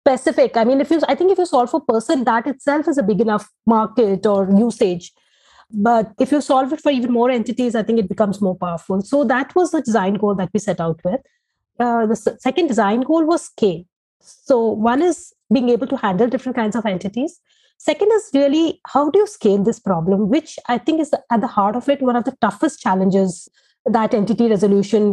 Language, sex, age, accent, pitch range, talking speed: English, female, 30-49, Indian, 215-280 Hz, 220 wpm